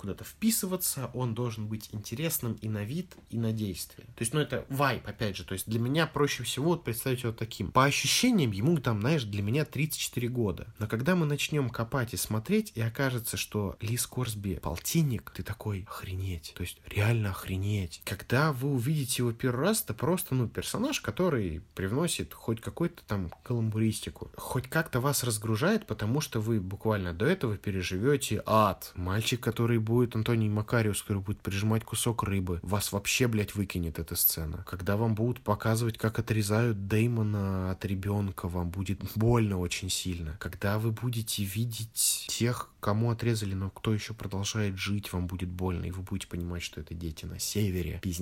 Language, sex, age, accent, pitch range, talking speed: Russian, male, 20-39, native, 95-120 Hz, 175 wpm